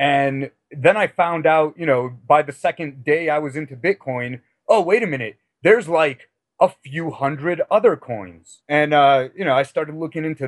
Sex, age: male, 30-49